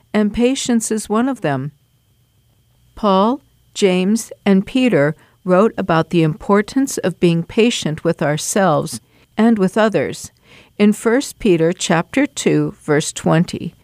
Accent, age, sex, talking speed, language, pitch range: American, 50-69, female, 120 wpm, English, 160-220 Hz